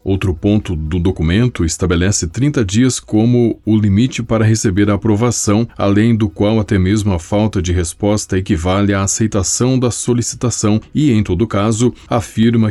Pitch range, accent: 90-110 Hz, Brazilian